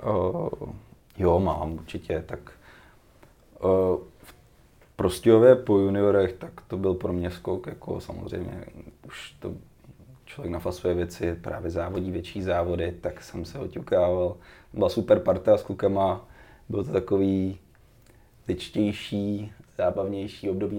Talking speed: 120 wpm